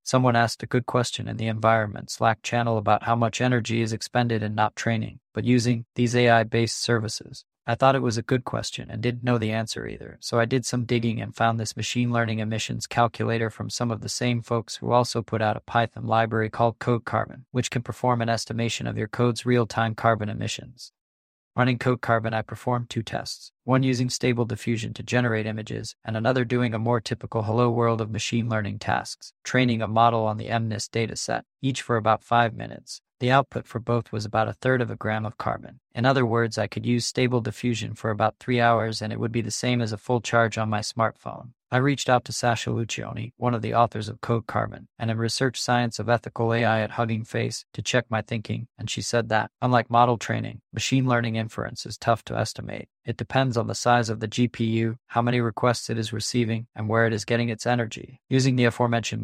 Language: English